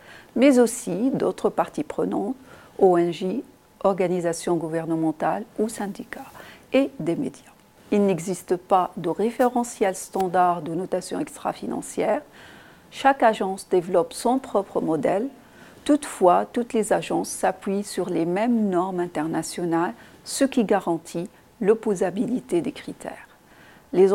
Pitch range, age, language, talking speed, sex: 175-225 Hz, 50-69, French, 110 wpm, female